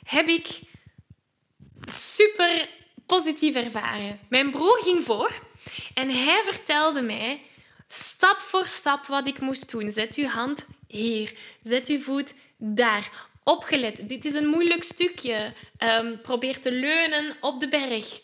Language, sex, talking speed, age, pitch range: Dutch, female, 135 wpm, 10-29, 230-300 Hz